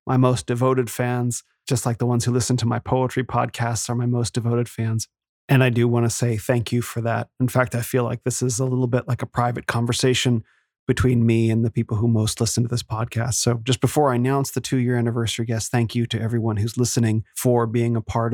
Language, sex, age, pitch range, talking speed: English, male, 30-49, 115-130 Hz, 240 wpm